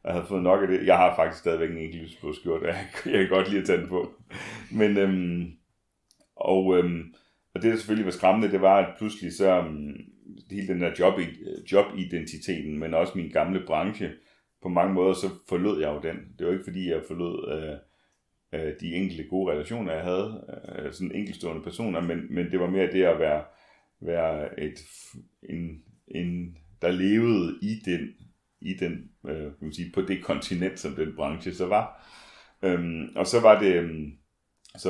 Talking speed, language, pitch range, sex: 190 wpm, Danish, 80-95 Hz, male